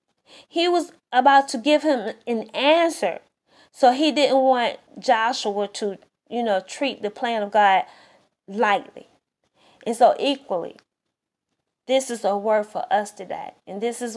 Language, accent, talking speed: English, American, 150 wpm